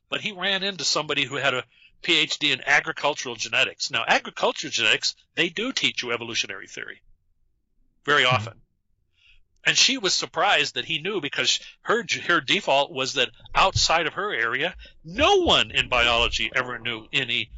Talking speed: 160 wpm